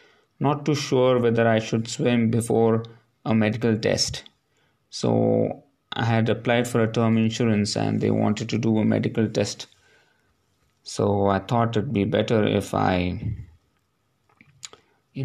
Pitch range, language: 100-125 Hz, English